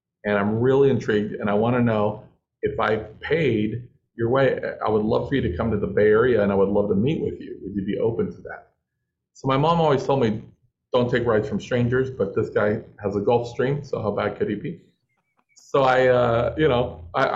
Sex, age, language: male, 40-59, English